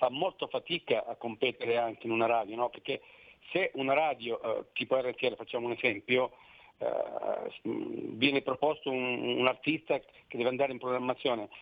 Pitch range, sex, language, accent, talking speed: 120-145 Hz, male, Italian, native, 160 wpm